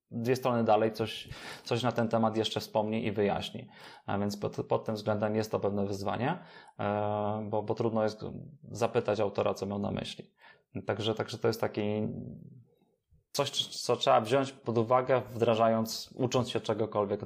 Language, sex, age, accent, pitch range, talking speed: Polish, male, 20-39, native, 105-120 Hz, 165 wpm